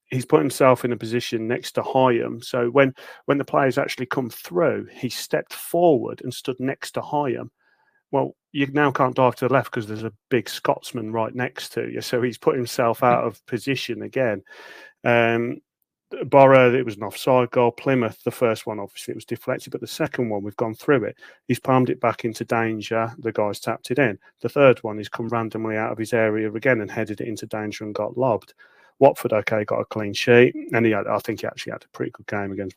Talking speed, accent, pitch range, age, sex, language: 220 wpm, British, 110-125 Hz, 30-49, male, English